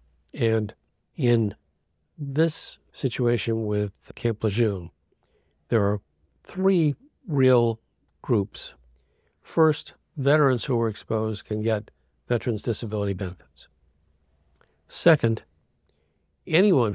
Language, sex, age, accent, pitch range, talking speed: English, male, 60-79, American, 95-120 Hz, 85 wpm